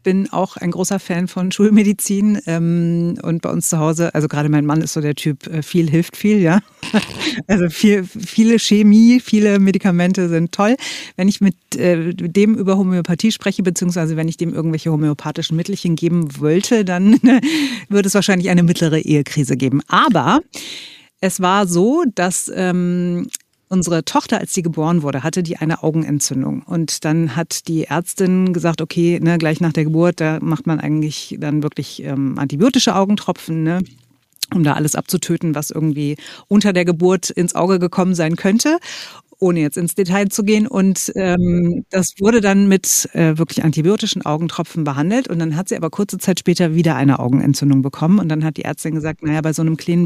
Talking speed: 175 wpm